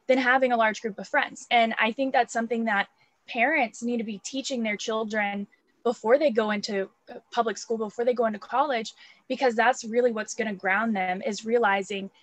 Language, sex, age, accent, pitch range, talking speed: English, female, 10-29, American, 205-240 Hz, 195 wpm